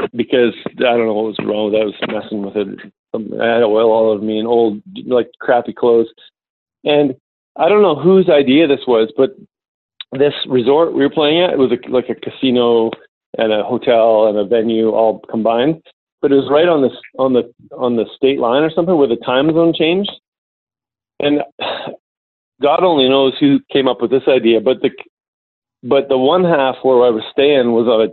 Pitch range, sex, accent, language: 115-135 Hz, male, American, English